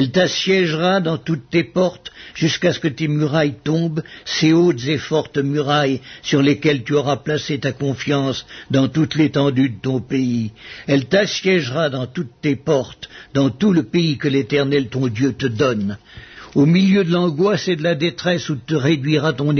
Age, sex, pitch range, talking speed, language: 60-79, male, 130-155 Hz, 180 wpm, English